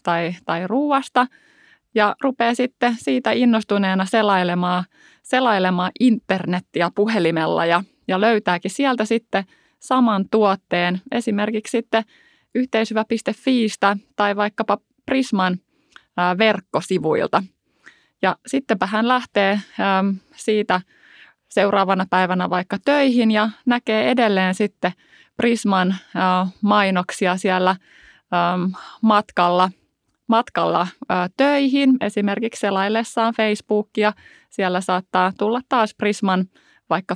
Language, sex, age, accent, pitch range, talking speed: Finnish, female, 20-39, native, 185-230 Hz, 85 wpm